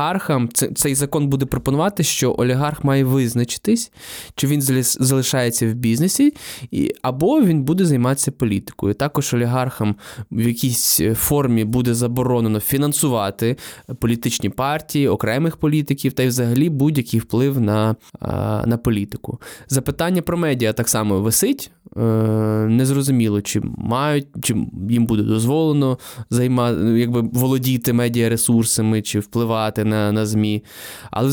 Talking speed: 125 wpm